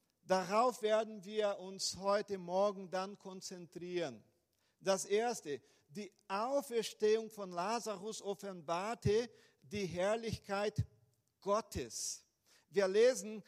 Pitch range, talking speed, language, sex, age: 190-225 Hz, 90 wpm, German, male, 50-69